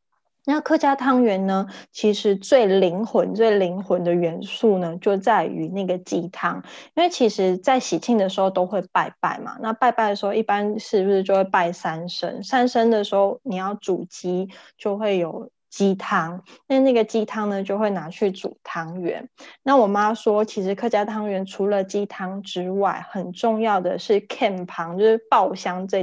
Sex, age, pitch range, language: female, 20-39, 190-225 Hz, Chinese